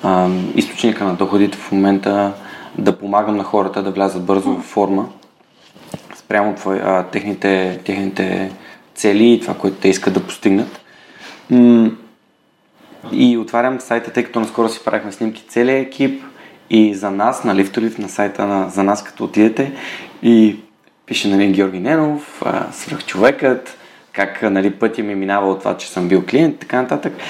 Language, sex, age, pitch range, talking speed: Bulgarian, male, 20-39, 100-120 Hz, 155 wpm